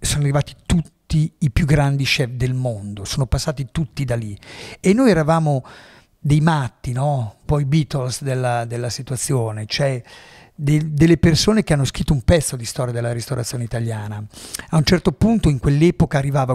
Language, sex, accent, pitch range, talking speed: Italian, male, native, 125-155 Hz, 165 wpm